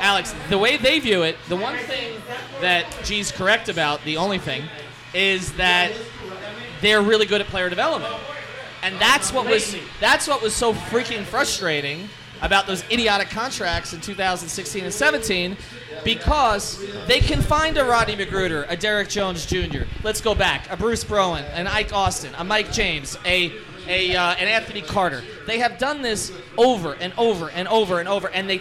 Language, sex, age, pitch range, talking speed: English, male, 30-49, 175-210 Hz, 180 wpm